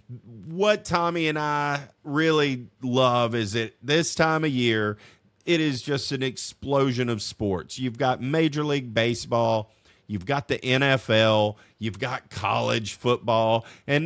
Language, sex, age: English, male, 40-59